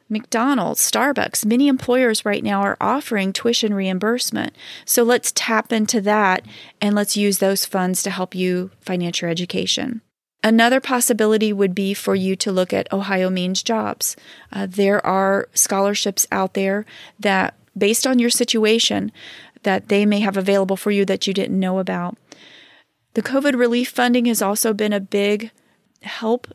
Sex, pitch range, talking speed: female, 190-225 Hz, 160 wpm